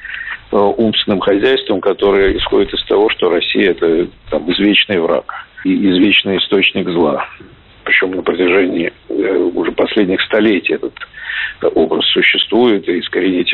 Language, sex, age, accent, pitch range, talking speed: Russian, male, 50-69, native, 340-425 Hz, 110 wpm